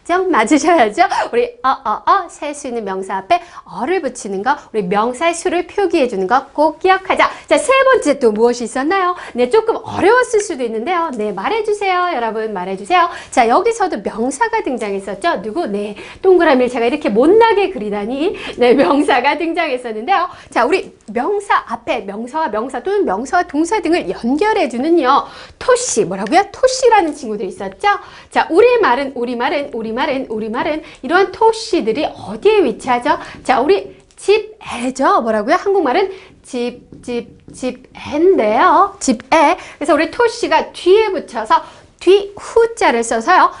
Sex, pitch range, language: female, 235-390 Hz, Korean